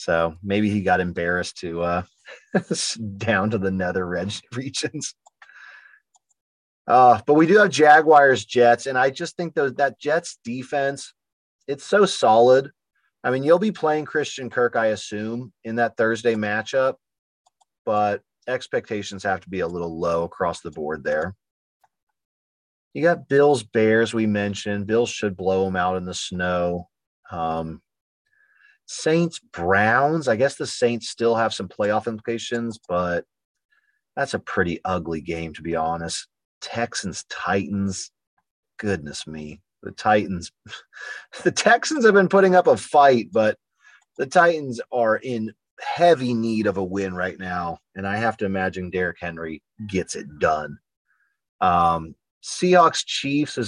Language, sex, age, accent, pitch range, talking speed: English, male, 30-49, American, 90-145 Hz, 140 wpm